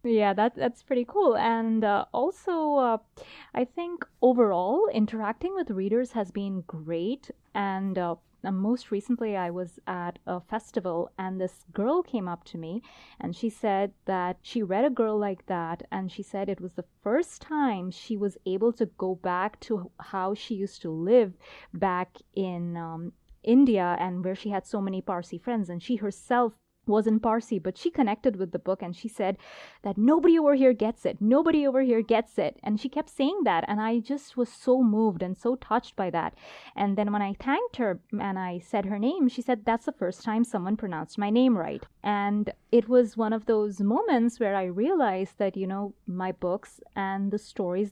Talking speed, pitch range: 195 wpm, 190-240 Hz